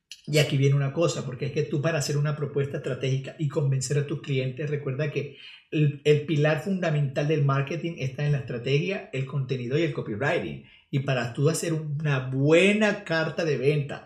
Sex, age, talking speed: male, 50-69, 190 wpm